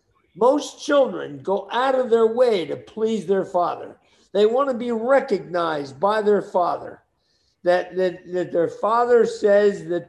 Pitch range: 175-225 Hz